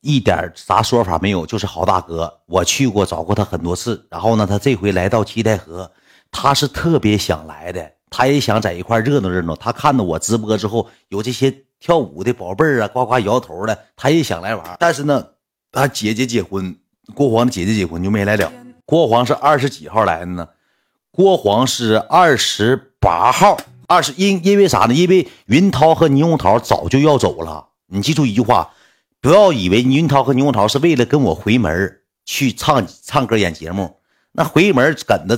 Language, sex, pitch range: Chinese, male, 95-135 Hz